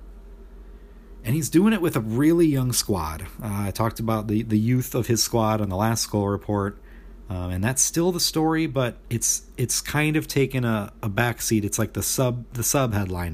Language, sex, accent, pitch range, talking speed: English, male, American, 100-130 Hz, 205 wpm